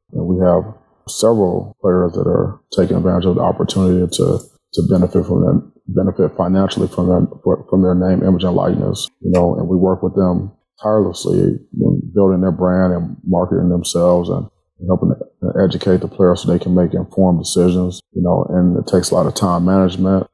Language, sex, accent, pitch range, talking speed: English, male, American, 90-95 Hz, 195 wpm